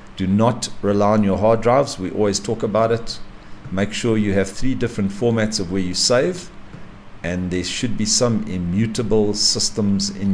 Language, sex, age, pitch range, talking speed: English, male, 50-69, 95-115 Hz, 180 wpm